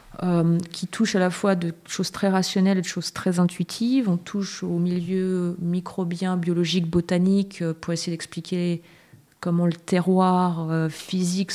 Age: 30-49